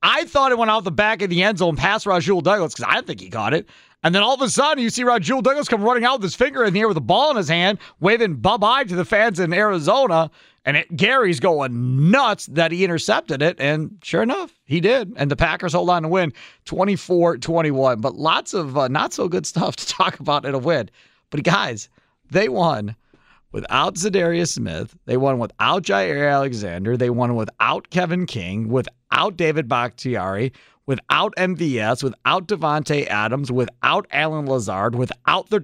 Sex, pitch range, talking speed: male, 140-225 Hz, 195 wpm